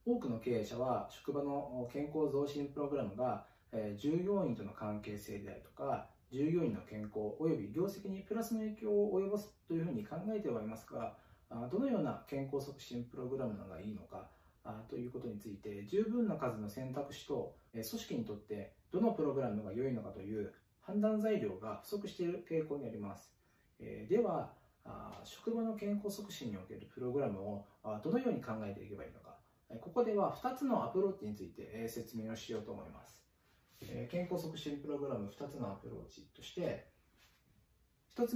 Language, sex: Japanese, male